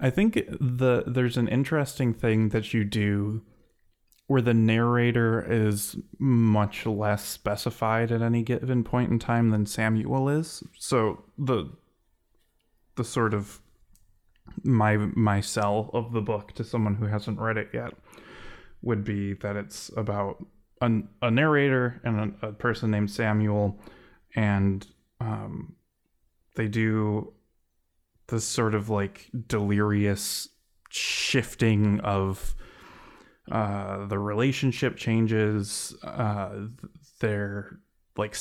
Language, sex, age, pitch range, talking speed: English, male, 20-39, 105-115 Hz, 120 wpm